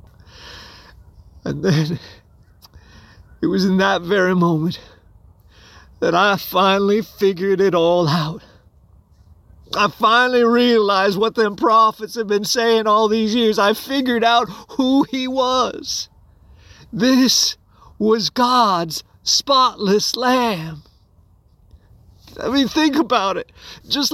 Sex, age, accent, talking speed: male, 40-59, American, 110 wpm